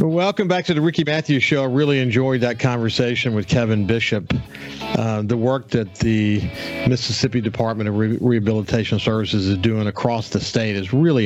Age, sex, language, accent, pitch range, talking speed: 50-69, male, English, American, 110-140 Hz, 170 wpm